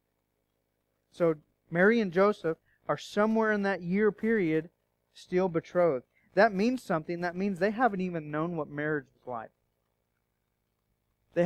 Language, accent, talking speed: English, American, 135 wpm